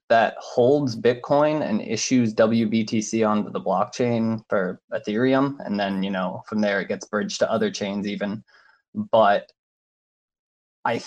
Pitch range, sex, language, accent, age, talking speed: 105-125 Hz, male, English, American, 20-39, 140 wpm